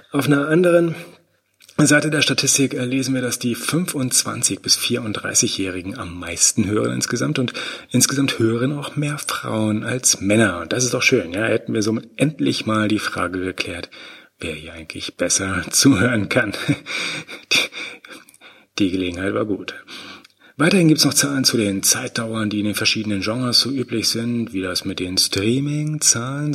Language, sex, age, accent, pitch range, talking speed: German, male, 30-49, German, 95-130 Hz, 155 wpm